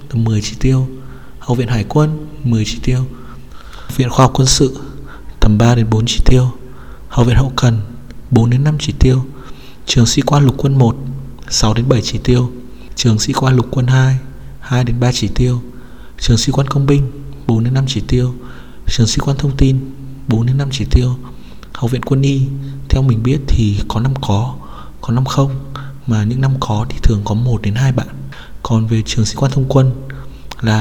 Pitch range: 110-130 Hz